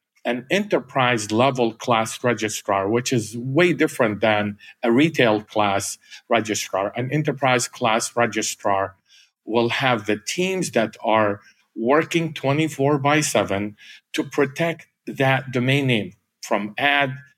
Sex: male